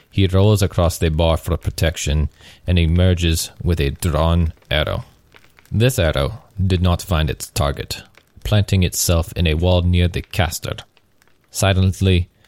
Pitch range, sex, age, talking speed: 85-100 Hz, male, 30-49, 140 wpm